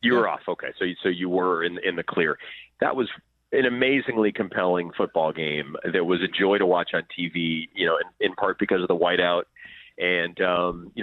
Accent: American